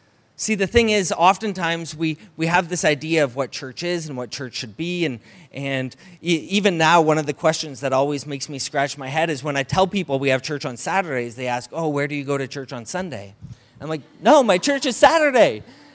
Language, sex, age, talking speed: English, male, 30-49, 235 wpm